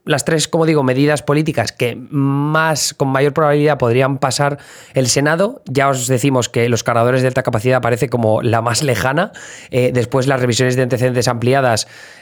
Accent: Spanish